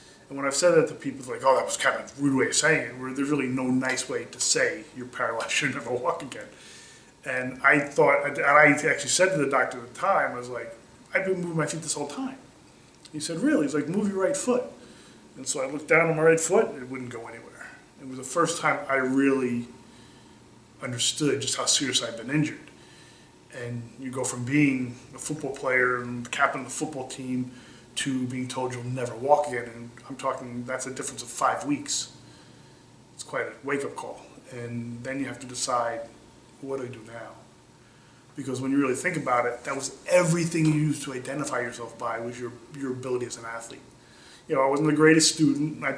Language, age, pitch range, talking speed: English, 30-49, 125-150 Hz, 225 wpm